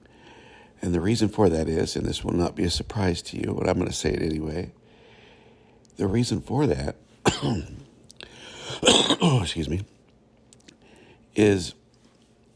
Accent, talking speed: American, 140 wpm